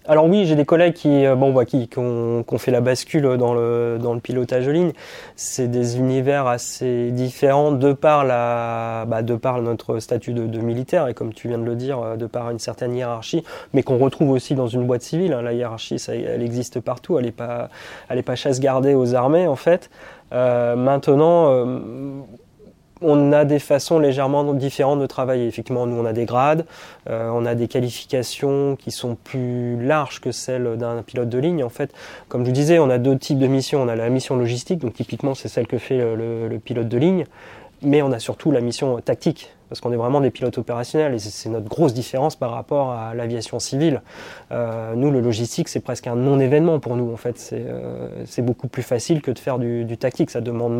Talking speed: 225 wpm